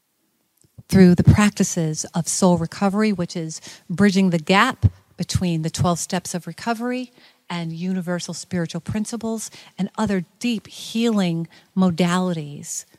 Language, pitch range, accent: English, 165-200 Hz, American